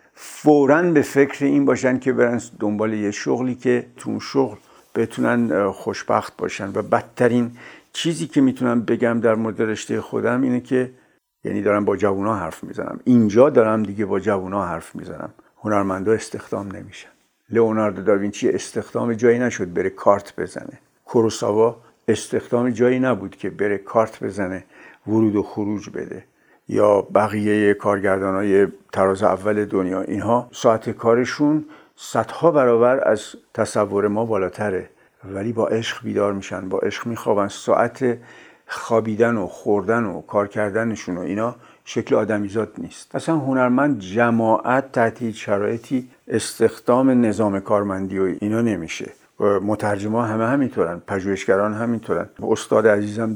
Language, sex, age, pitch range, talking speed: Persian, male, 60-79, 105-120 Hz, 130 wpm